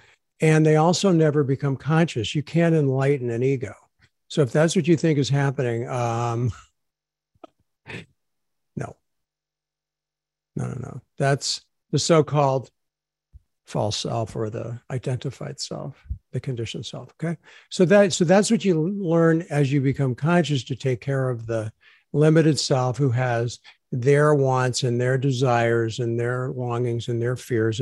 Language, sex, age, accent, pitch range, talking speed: English, male, 60-79, American, 120-150 Hz, 145 wpm